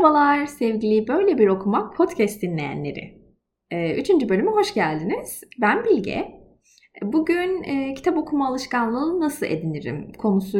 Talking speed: 115 wpm